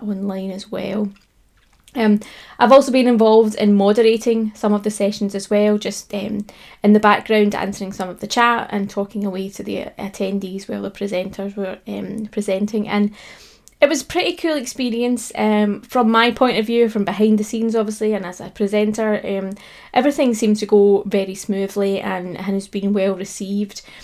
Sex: female